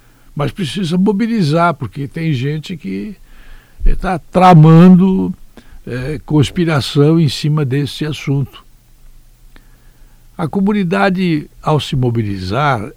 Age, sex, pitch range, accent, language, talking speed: 60-79, male, 105-160 Hz, Brazilian, Portuguese, 90 wpm